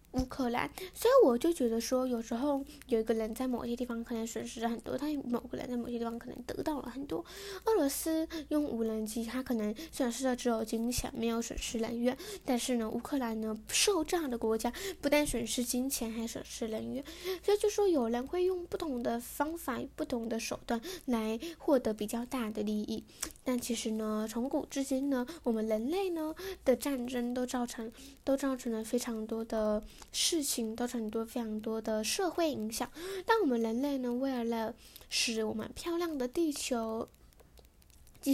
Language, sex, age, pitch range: Chinese, female, 10-29, 230-295 Hz